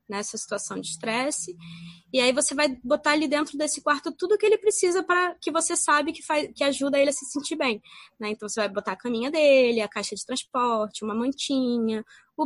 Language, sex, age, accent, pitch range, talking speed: Portuguese, female, 20-39, Brazilian, 210-265 Hz, 220 wpm